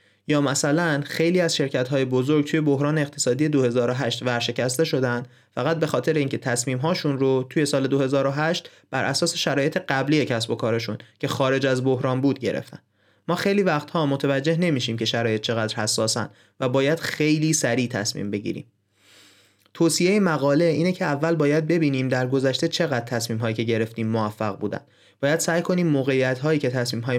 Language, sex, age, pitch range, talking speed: Persian, male, 30-49, 125-155 Hz, 165 wpm